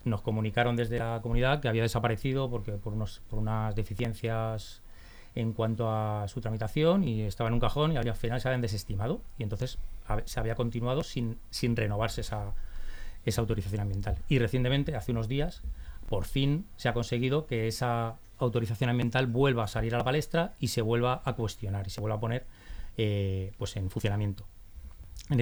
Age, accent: 20-39, Spanish